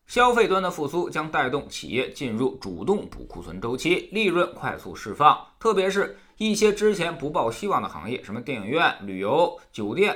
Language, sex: Chinese, male